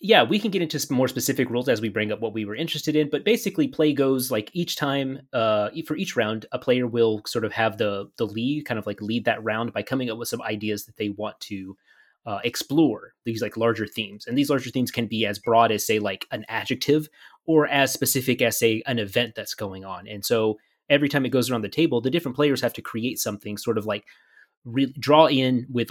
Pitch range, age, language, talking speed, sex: 110-140 Hz, 20-39, English, 245 wpm, male